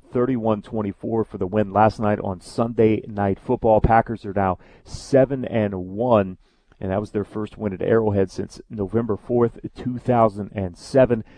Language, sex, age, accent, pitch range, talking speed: English, male, 40-59, American, 105-120 Hz, 150 wpm